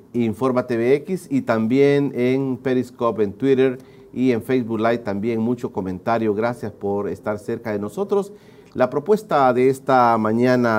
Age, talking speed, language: 40-59, 145 wpm, Spanish